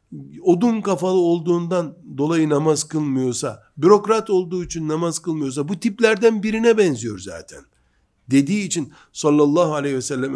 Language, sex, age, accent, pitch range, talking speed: Turkish, male, 60-79, native, 140-180 Hz, 125 wpm